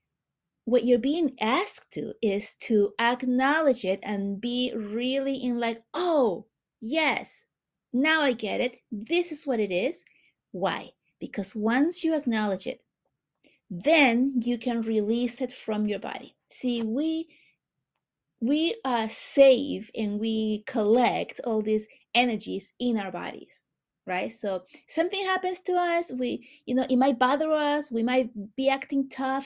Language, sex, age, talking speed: English, female, 30-49, 145 wpm